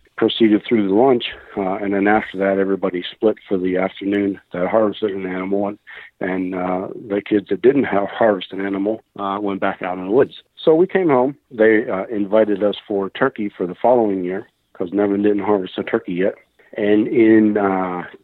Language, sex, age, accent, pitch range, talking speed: English, male, 50-69, American, 95-110 Hz, 195 wpm